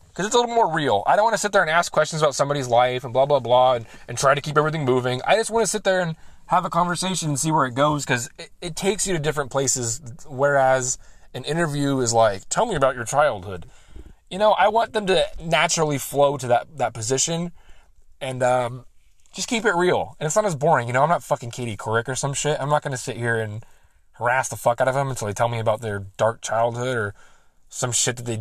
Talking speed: 255 wpm